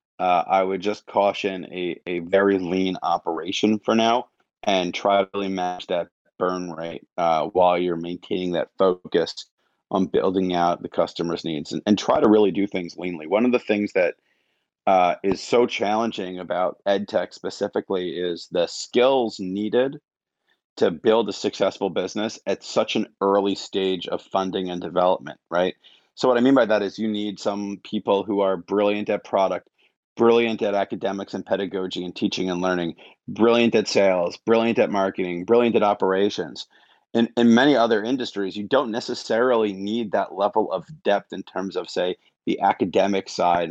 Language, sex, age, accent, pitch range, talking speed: English, male, 30-49, American, 90-105 Hz, 170 wpm